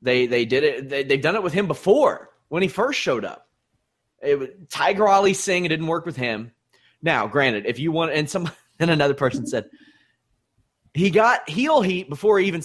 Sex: male